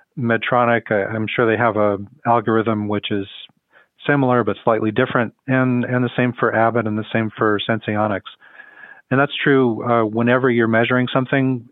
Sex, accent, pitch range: male, American, 105-125 Hz